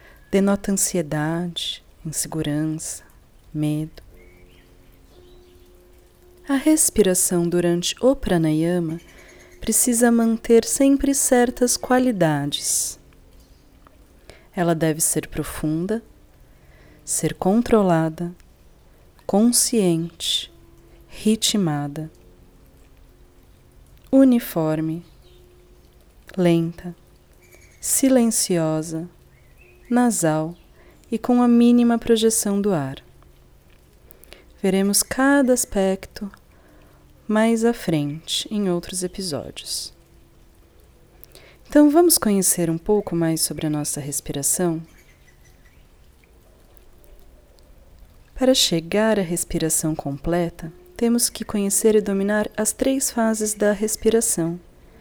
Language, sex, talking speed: Portuguese, female, 75 wpm